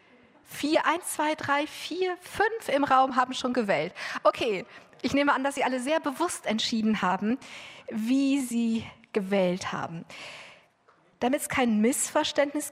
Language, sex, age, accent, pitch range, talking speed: German, female, 50-69, German, 220-280 Hz, 140 wpm